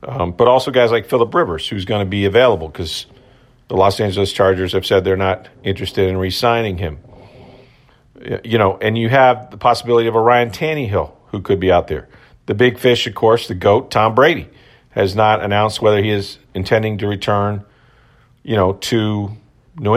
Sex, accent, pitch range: male, American, 100-125 Hz